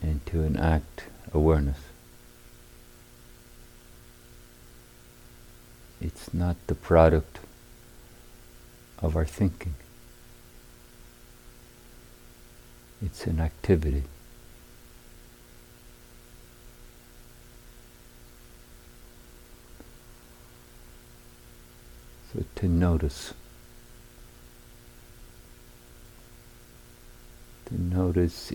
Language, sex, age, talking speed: English, male, 60-79, 40 wpm